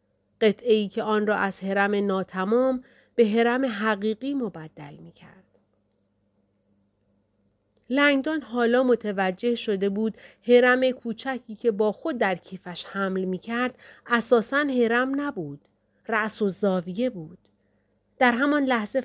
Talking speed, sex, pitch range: 115 wpm, female, 145-235 Hz